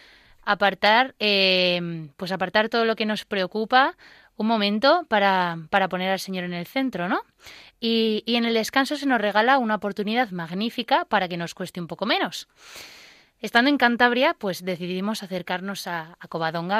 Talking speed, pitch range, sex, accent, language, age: 170 wpm, 185-245 Hz, female, Spanish, Spanish, 20-39